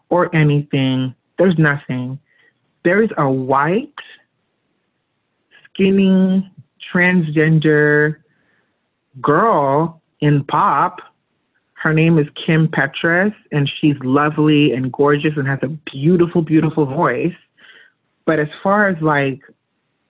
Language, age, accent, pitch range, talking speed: English, 30-49, American, 140-175 Hz, 100 wpm